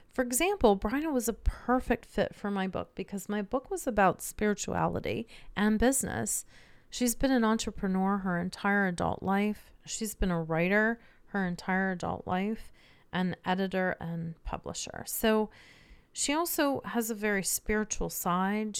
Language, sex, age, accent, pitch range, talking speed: English, female, 30-49, American, 185-240 Hz, 145 wpm